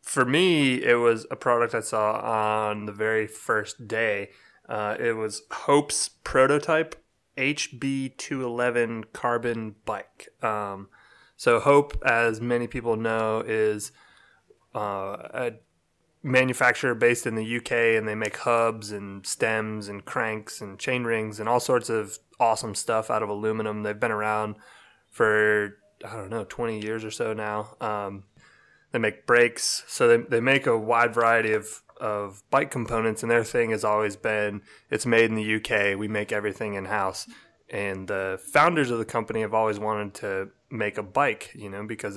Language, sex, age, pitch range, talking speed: English, male, 20-39, 105-120 Hz, 165 wpm